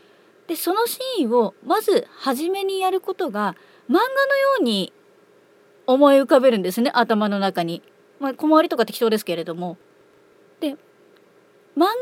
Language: Japanese